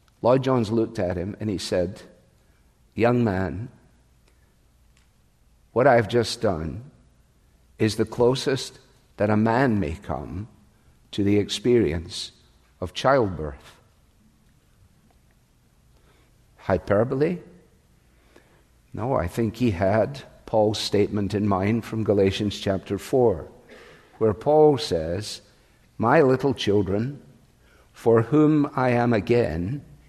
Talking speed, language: 105 wpm, English